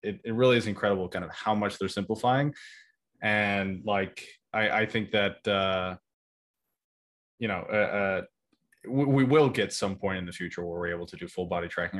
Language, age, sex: English, 20-39, male